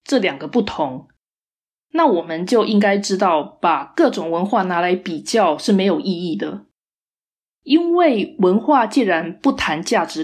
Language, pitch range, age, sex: Chinese, 180-275 Hz, 20-39, female